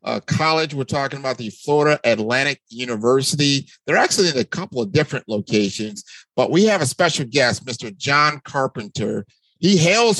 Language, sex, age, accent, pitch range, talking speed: English, male, 50-69, American, 125-170 Hz, 165 wpm